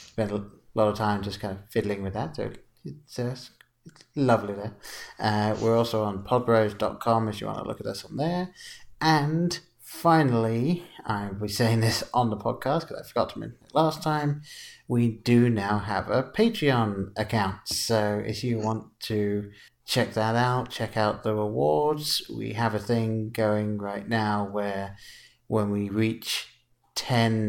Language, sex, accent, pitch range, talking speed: English, male, British, 105-120 Hz, 170 wpm